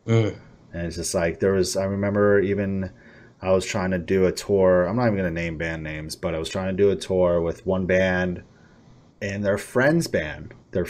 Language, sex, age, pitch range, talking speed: English, male, 30-49, 90-110 Hz, 220 wpm